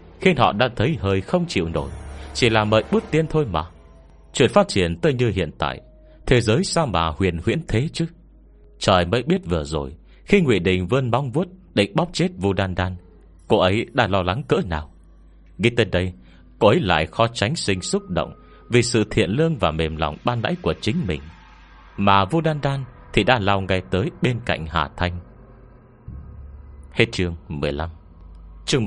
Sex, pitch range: male, 85-125 Hz